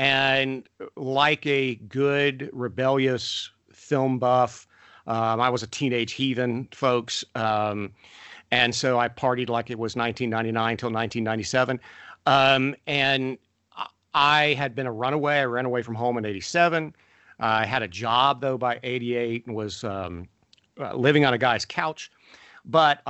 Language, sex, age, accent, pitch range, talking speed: English, male, 50-69, American, 115-135 Hz, 145 wpm